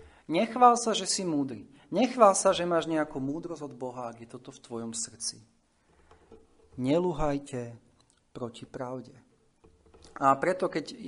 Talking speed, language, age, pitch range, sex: 135 wpm, Slovak, 40-59, 120-155 Hz, male